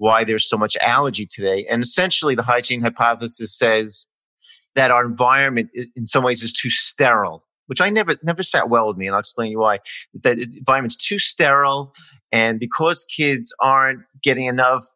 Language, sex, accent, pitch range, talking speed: English, male, American, 110-135 Hz, 185 wpm